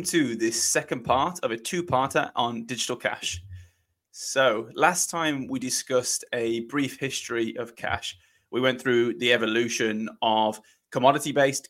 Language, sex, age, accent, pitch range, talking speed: English, male, 20-39, British, 115-135 Hz, 140 wpm